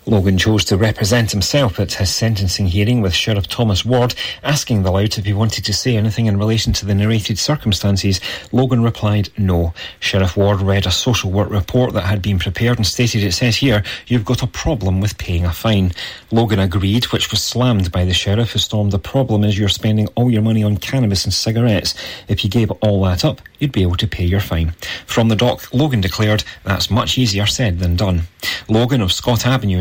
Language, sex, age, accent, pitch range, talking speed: English, male, 30-49, British, 95-115 Hz, 210 wpm